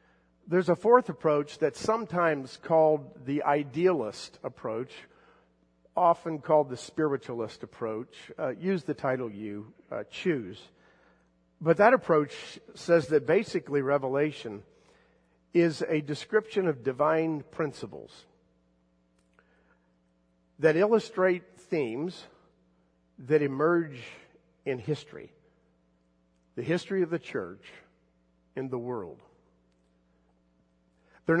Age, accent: 50-69, American